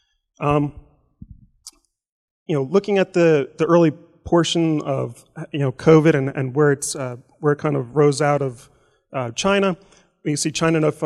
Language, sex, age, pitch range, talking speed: English, male, 30-49, 135-155 Hz, 170 wpm